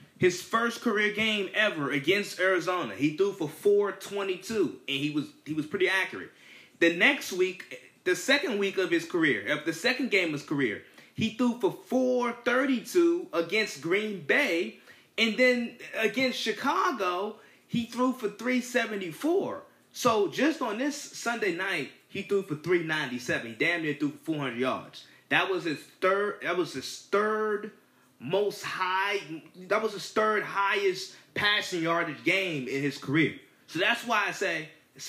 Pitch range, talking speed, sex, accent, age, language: 180-255 Hz, 160 wpm, male, American, 20-39, English